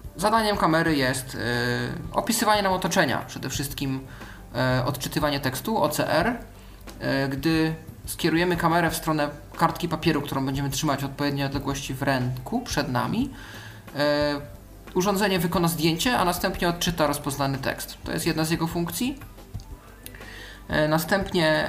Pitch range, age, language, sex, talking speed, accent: 130-160 Hz, 20-39, Polish, male, 135 wpm, native